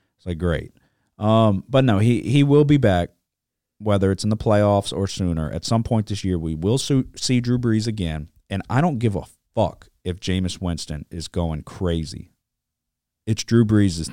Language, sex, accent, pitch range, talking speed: English, male, American, 85-115 Hz, 185 wpm